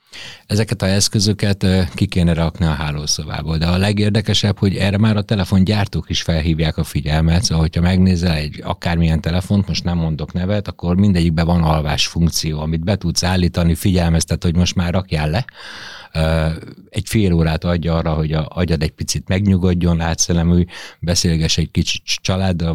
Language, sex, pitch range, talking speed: Hungarian, male, 80-100 Hz, 160 wpm